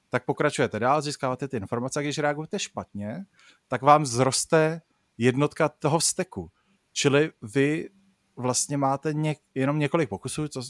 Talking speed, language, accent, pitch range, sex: 140 wpm, Czech, native, 115-145 Hz, male